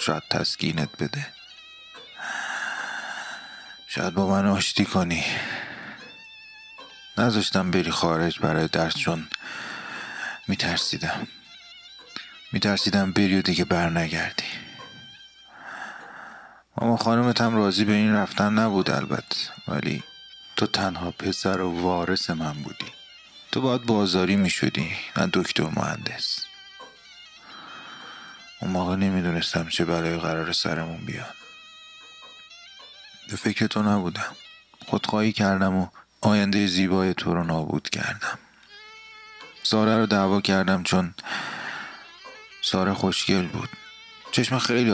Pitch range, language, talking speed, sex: 85-135 Hz, Persian, 100 wpm, male